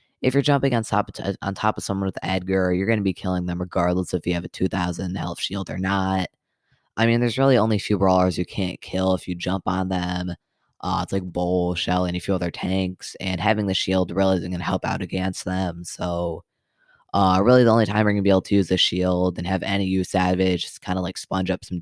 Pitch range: 90-100 Hz